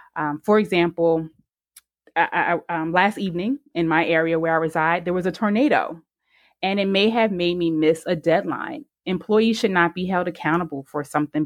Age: 20-39